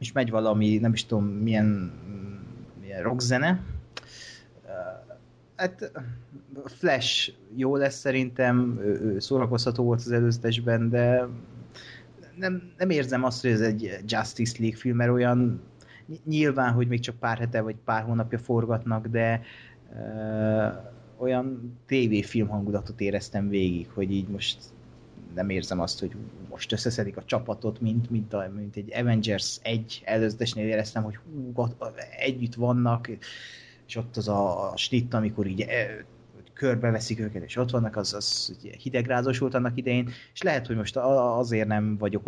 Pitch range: 105-120 Hz